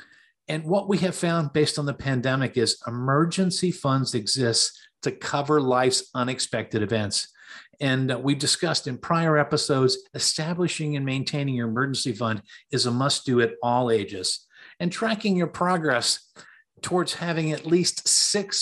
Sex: male